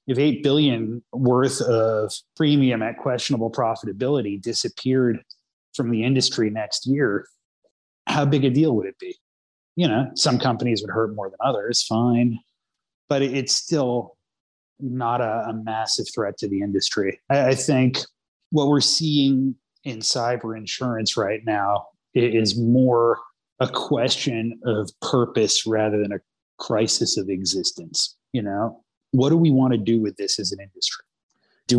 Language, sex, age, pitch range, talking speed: English, male, 30-49, 110-130 Hz, 155 wpm